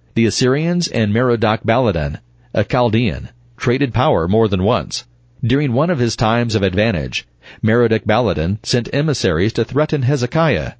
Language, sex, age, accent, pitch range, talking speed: English, male, 40-59, American, 100-125 Hz, 140 wpm